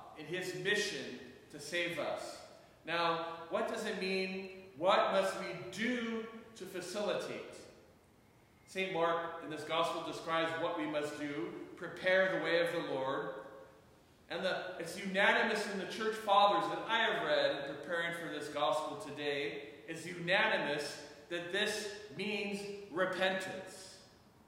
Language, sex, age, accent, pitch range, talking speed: English, male, 40-59, American, 150-190 Hz, 135 wpm